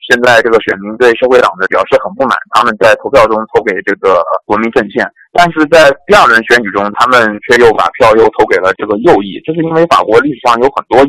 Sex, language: male, Chinese